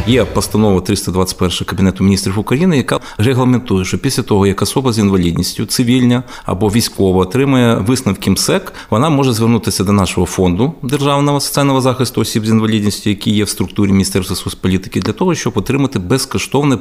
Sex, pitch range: male, 95-120 Hz